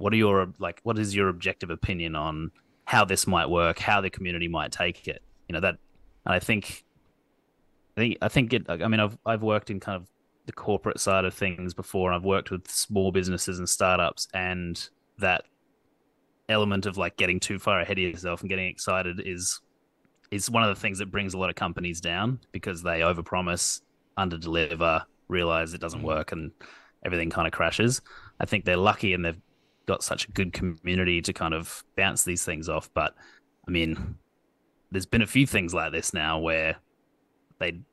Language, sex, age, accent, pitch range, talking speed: English, male, 20-39, Australian, 90-105 Hz, 190 wpm